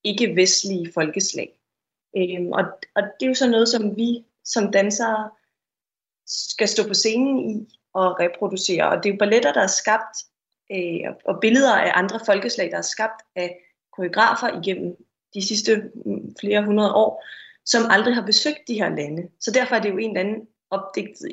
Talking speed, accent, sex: 165 wpm, native, female